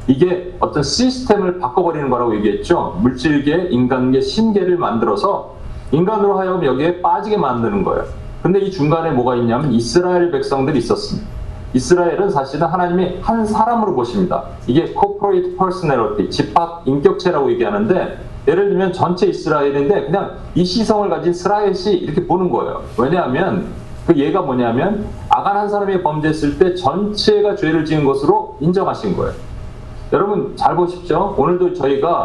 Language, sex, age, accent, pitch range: Korean, male, 40-59, native, 140-205 Hz